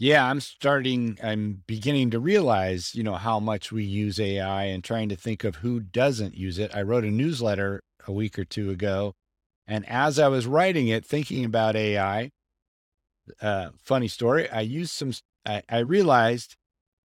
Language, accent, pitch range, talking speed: English, American, 100-130 Hz, 175 wpm